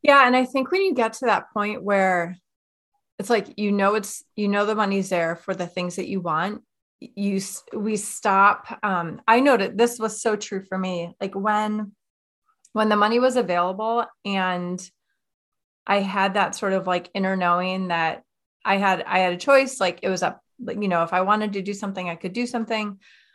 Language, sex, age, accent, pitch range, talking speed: English, female, 30-49, American, 180-220 Hz, 205 wpm